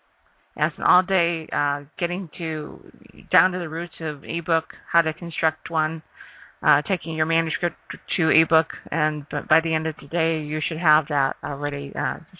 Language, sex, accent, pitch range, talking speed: English, female, American, 150-170 Hz, 175 wpm